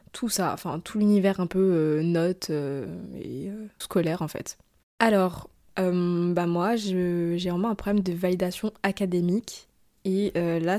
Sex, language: female, French